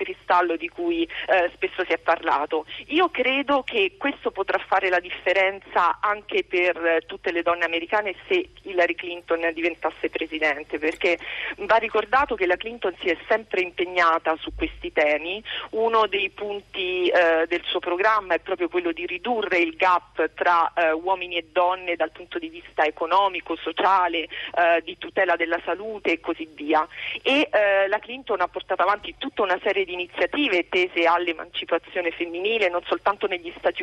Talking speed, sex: 165 wpm, female